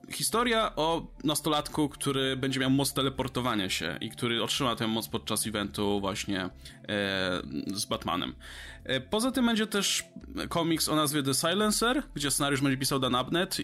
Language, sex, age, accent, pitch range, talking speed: Polish, male, 20-39, native, 105-135 Hz, 160 wpm